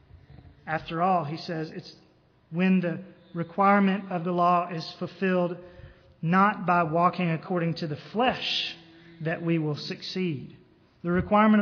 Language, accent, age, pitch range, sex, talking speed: English, American, 30-49, 170-205 Hz, male, 135 wpm